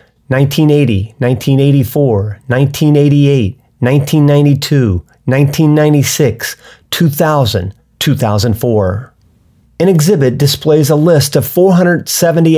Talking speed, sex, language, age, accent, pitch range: 65 wpm, male, English, 40-59, American, 120-160 Hz